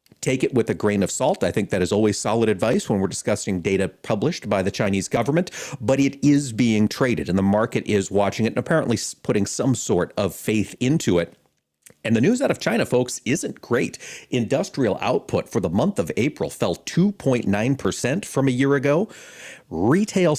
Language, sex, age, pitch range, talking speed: English, male, 40-59, 100-135 Hz, 195 wpm